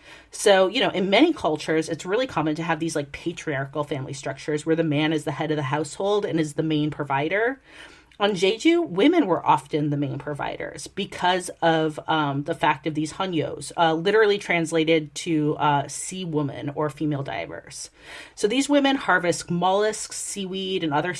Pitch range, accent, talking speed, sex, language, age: 155-200 Hz, American, 180 wpm, female, English, 30-49